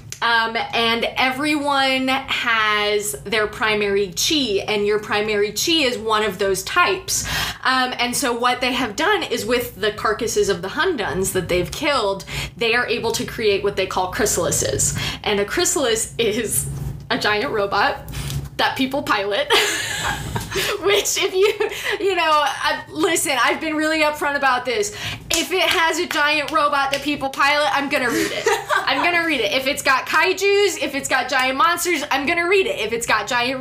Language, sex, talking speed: English, female, 180 wpm